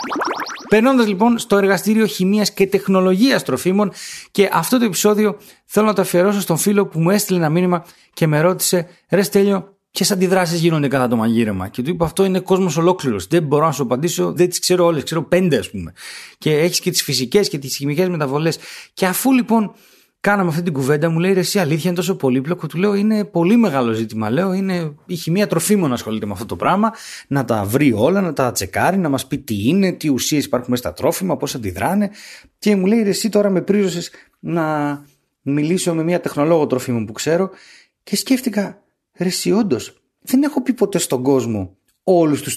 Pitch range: 140-195 Hz